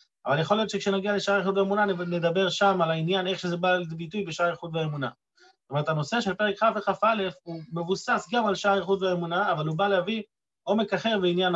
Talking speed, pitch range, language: 200 wpm, 165-215 Hz, Hebrew